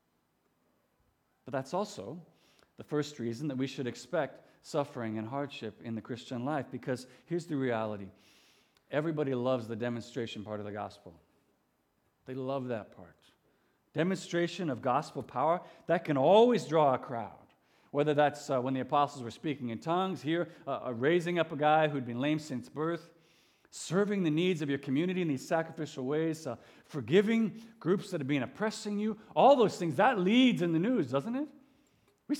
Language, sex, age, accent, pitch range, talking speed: English, male, 50-69, American, 125-175 Hz, 170 wpm